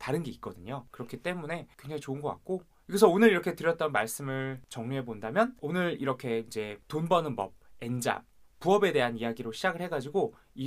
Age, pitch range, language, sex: 20-39, 120-185 Hz, Korean, male